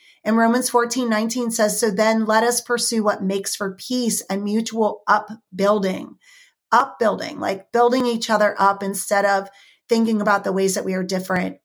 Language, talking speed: English, 170 wpm